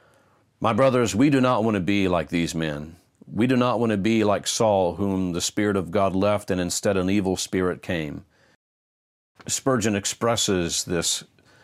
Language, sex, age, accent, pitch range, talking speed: English, male, 50-69, American, 90-120 Hz, 175 wpm